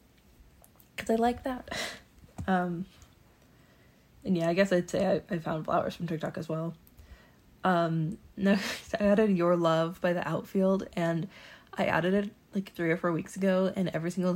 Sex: female